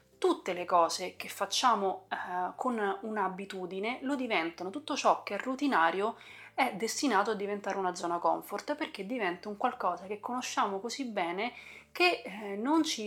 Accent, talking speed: native, 155 wpm